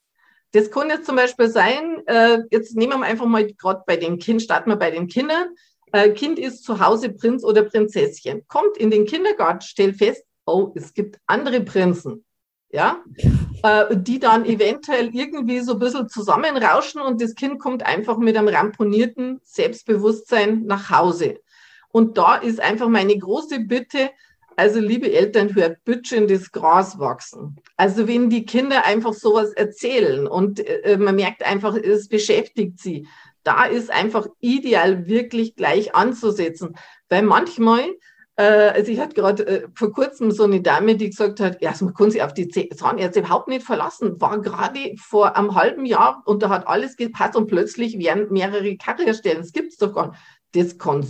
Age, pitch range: 50-69, 205-250 Hz